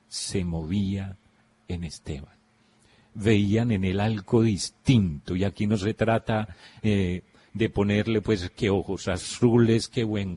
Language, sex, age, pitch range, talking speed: Spanish, male, 40-59, 95-115 Hz, 135 wpm